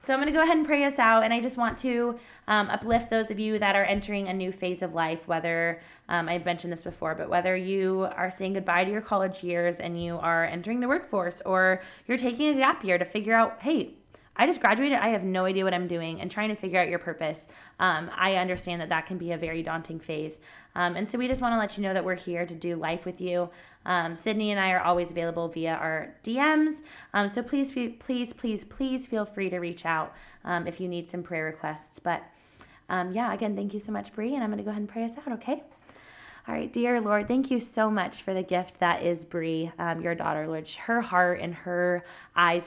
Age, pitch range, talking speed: 20-39, 165-215 Hz, 245 wpm